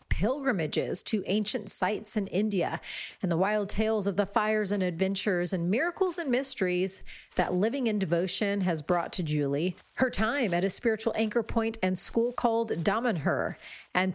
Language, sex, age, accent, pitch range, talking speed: English, female, 40-59, American, 180-240 Hz, 165 wpm